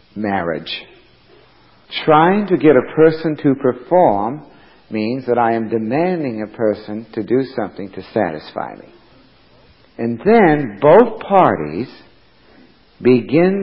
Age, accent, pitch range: 60-79, American, 95-130 Hz